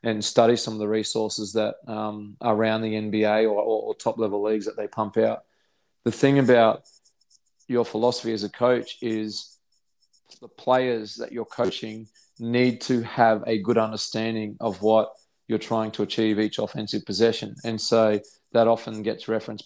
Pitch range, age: 105-115 Hz, 20-39